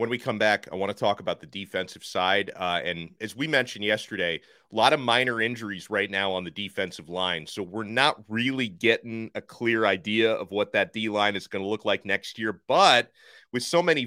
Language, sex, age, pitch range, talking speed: English, male, 30-49, 110-180 Hz, 225 wpm